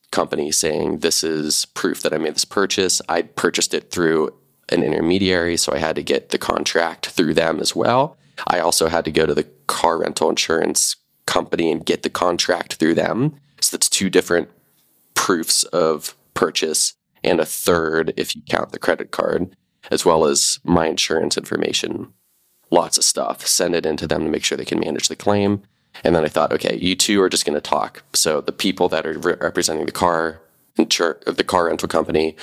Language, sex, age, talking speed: English, male, 20-39, 200 wpm